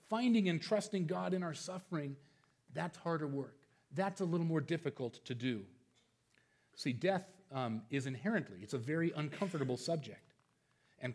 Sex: male